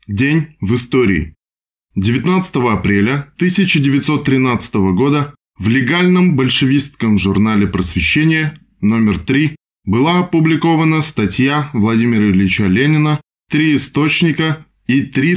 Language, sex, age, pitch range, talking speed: Russian, male, 20-39, 105-145 Hz, 95 wpm